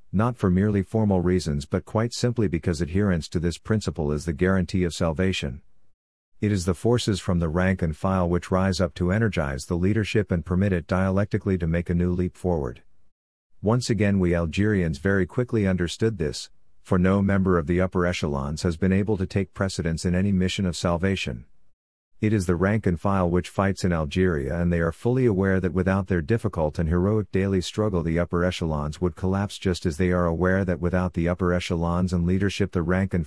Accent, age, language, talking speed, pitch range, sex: American, 50-69, English, 205 wpm, 85-100 Hz, male